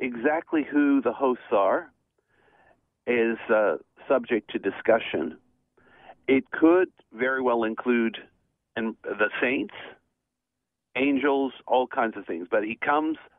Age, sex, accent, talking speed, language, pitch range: 50-69, male, American, 115 wpm, English, 115-140 Hz